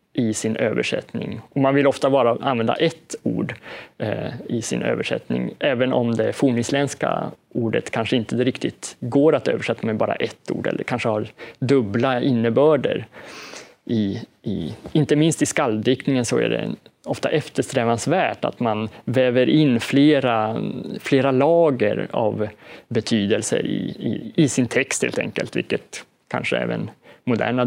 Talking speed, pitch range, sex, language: 145 wpm, 115-150 Hz, male, Swedish